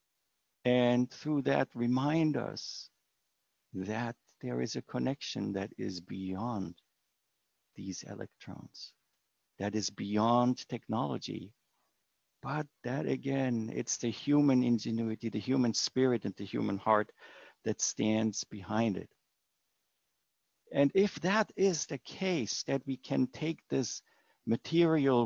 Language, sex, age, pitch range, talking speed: English, male, 50-69, 110-135 Hz, 115 wpm